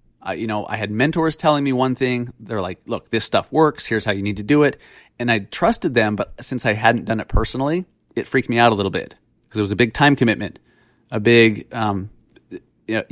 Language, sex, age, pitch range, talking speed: English, male, 30-49, 110-135 Hz, 235 wpm